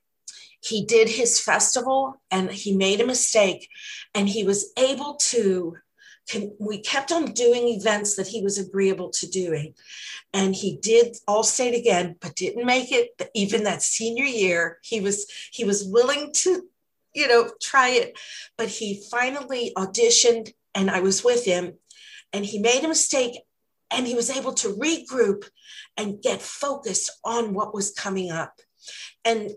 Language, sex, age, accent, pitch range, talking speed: English, female, 50-69, American, 195-250 Hz, 160 wpm